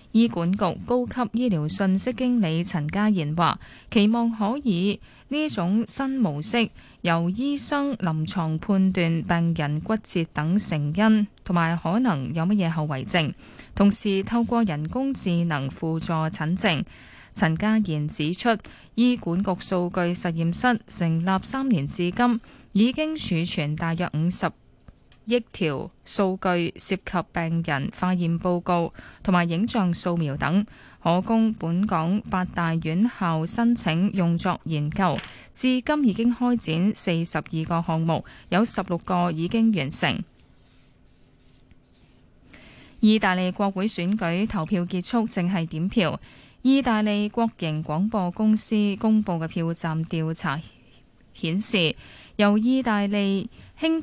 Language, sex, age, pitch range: Chinese, female, 10-29, 165-220 Hz